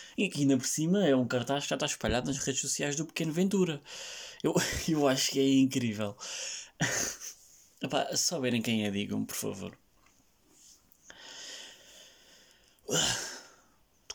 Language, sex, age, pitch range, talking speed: Portuguese, male, 20-39, 125-155 Hz, 140 wpm